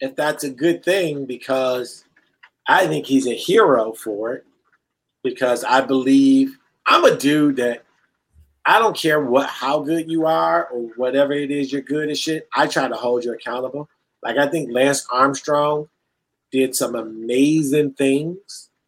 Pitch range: 125-155 Hz